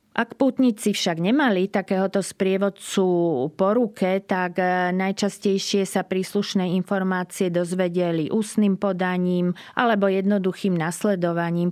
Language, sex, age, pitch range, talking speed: Slovak, female, 30-49, 175-195 Hz, 90 wpm